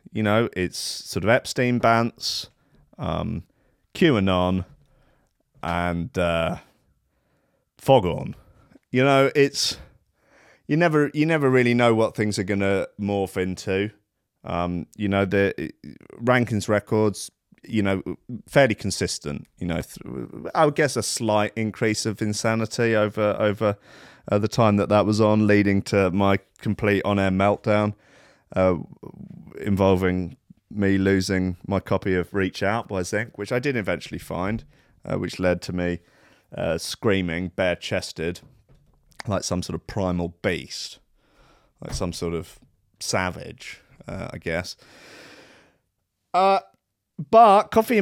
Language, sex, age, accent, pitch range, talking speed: English, male, 30-49, British, 95-125 Hz, 130 wpm